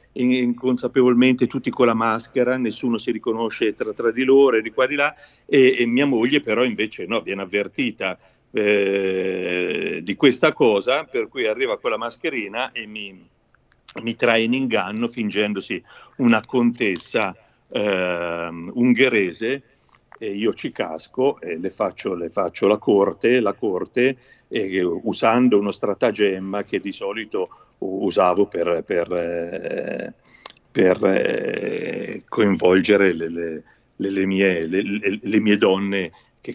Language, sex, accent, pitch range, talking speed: Italian, male, native, 100-135 Hz, 120 wpm